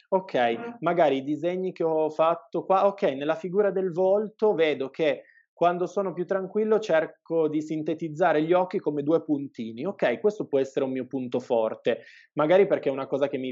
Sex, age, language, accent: male, 20-39, Italian, native